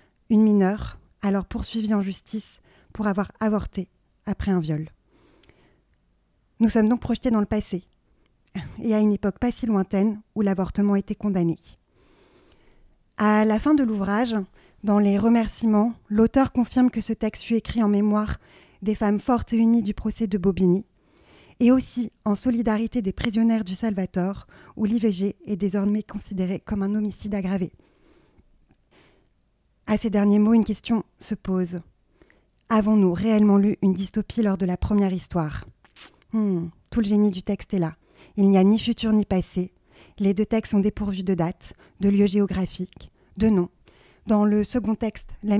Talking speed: 160 wpm